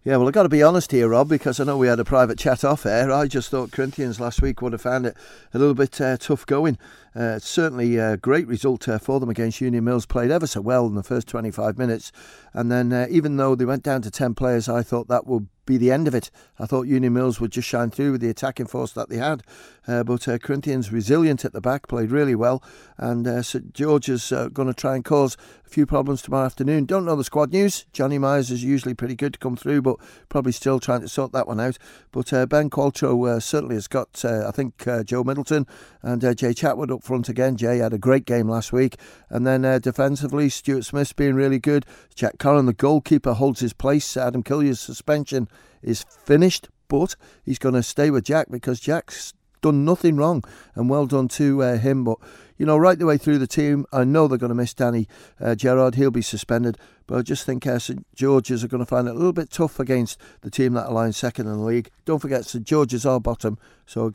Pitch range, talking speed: 120-140 Hz, 245 wpm